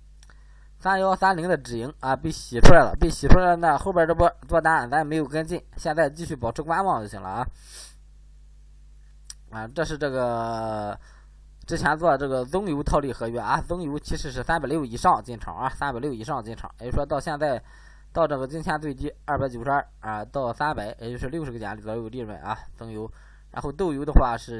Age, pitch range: 20-39, 110-150 Hz